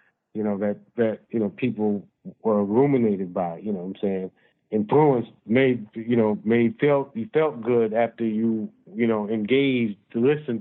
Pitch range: 100-125 Hz